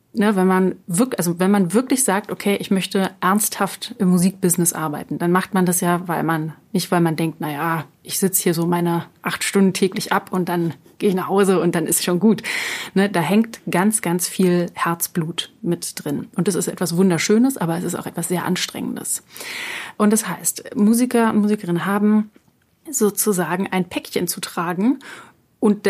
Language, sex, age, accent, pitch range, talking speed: German, female, 30-49, German, 175-210 Hz, 190 wpm